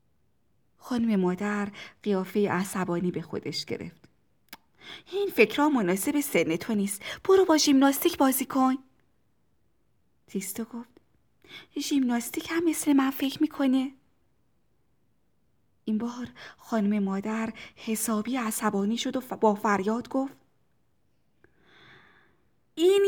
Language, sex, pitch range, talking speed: Persian, female, 205-295 Hz, 95 wpm